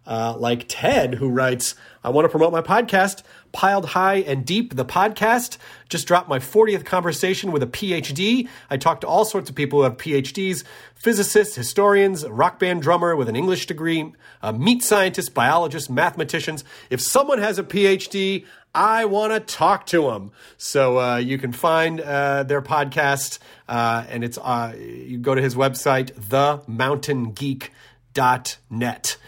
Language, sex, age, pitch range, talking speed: English, male, 30-49, 130-190 Hz, 160 wpm